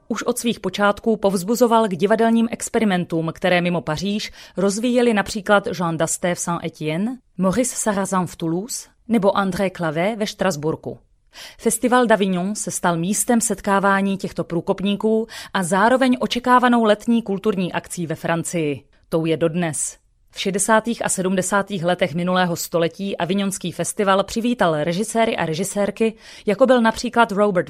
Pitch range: 175-220 Hz